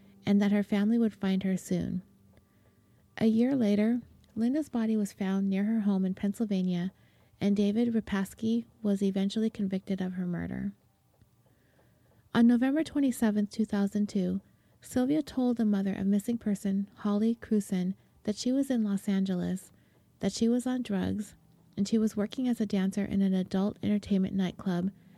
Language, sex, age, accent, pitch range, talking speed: English, female, 30-49, American, 185-220 Hz, 155 wpm